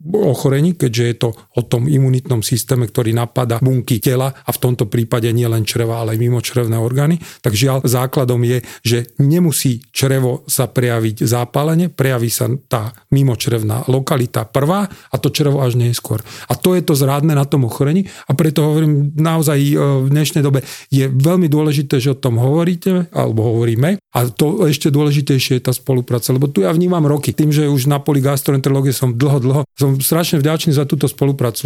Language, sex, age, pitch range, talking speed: Slovak, male, 40-59, 125-155 Hz, 180 wpm